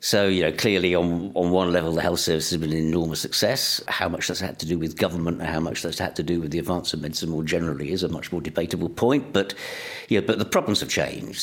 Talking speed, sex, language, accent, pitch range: 275 wpm, male, English, British, 80-95 Hz